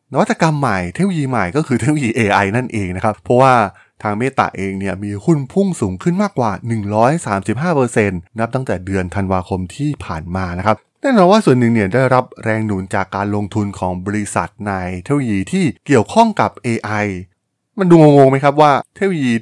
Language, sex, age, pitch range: Thai, male, 20-39, 100-130 Hz